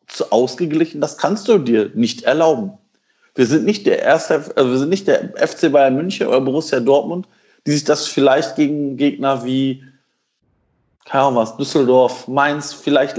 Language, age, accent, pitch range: German, 40-59, German, 130-165 Hz